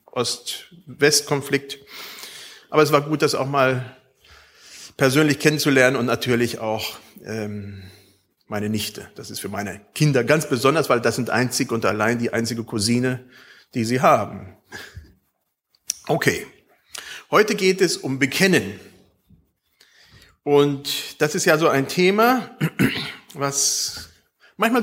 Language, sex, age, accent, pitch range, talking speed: German, male, 40-59, German, 120-175 Hz, 120 wpm